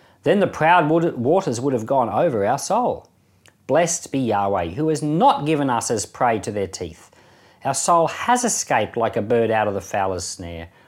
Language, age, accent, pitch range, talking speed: English, 40-59, Australian, 105-165 Hz, 195 wpm